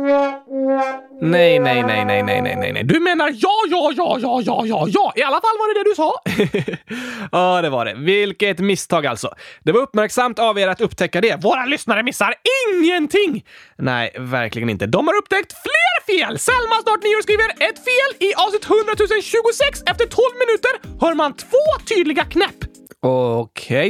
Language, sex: Swedish, male